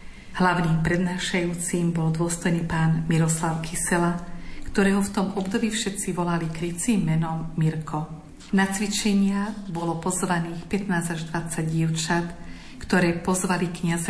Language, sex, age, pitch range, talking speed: Slovak, female, 50-69, 160-180 Hz, 115 wpm